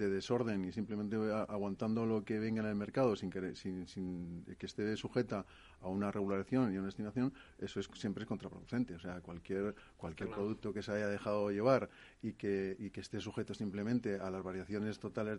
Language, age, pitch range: Spanish, 40-59, 100-120 Hz